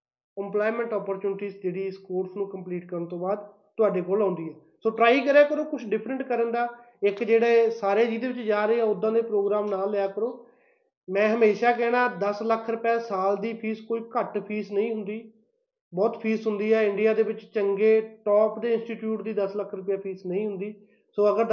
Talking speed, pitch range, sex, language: 190 wpm, 205-245 Hz, male, Punjabi